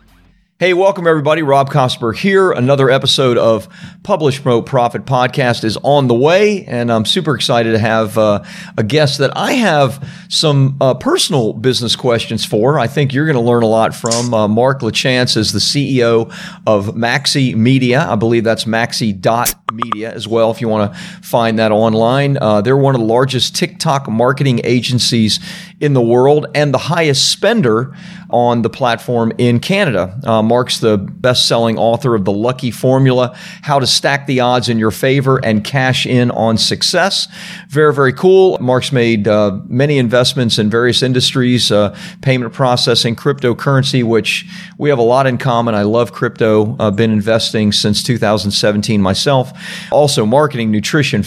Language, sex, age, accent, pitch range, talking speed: English, male, 40-59, American, 115-145 Hz, 165 wpm